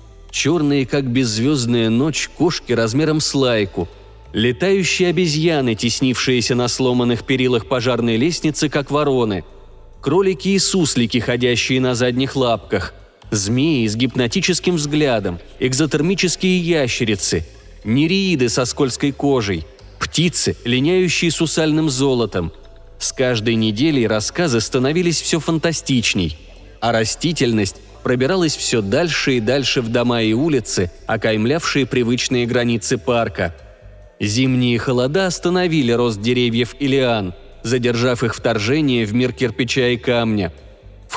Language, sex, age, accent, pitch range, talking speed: Russian, male, 30-49, native, 110-145 Hz, 110 wpm